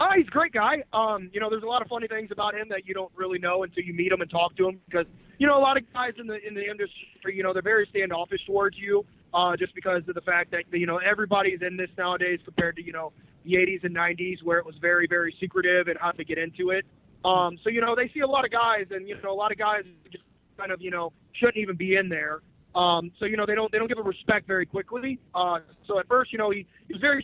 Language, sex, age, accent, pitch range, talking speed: English, male, 20-39, American, 170-200 Hz, 275 wpm